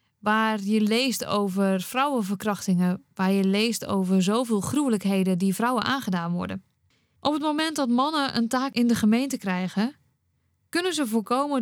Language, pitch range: Dutch, 190-250 Hz